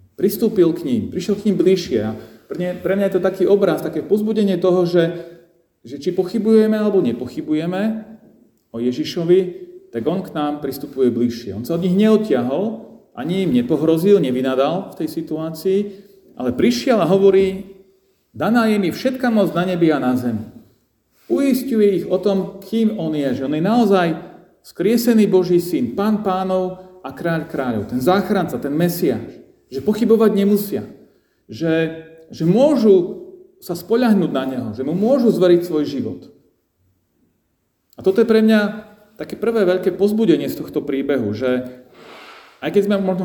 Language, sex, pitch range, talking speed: Slovak, male, 145-200 Hz, 155 wpm